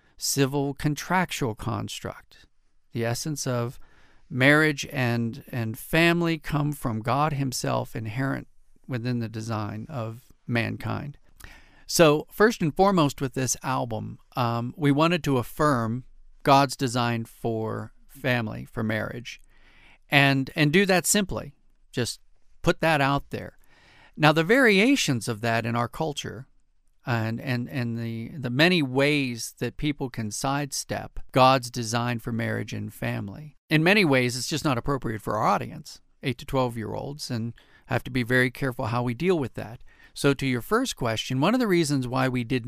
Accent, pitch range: American, 120-150 Hz